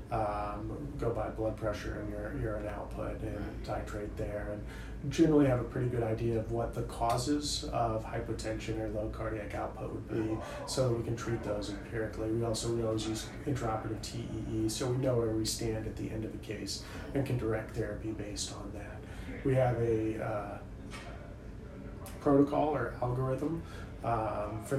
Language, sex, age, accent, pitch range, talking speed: English, male, 30-49, American, 105-115 Hz, 175 wpm